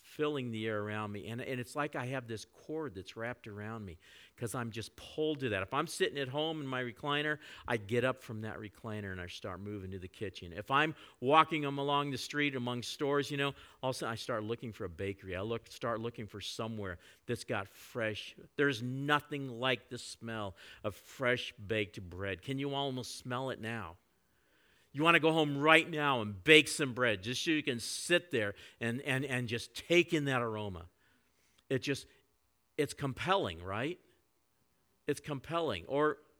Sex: male